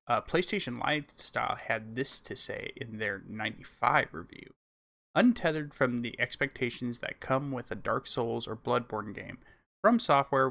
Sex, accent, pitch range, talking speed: male, American, 115-140 Hz, 150 wpm